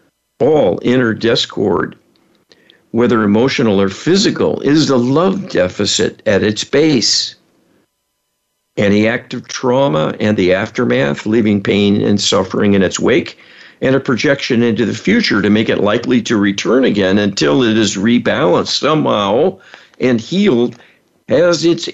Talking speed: 135 wpm